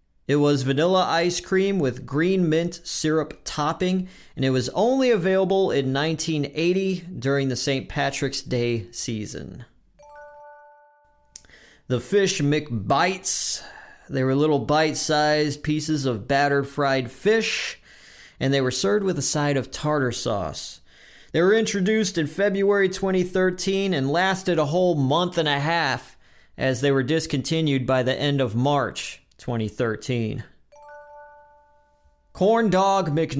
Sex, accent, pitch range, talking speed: male, American, 130-180 Hz, 125 wpm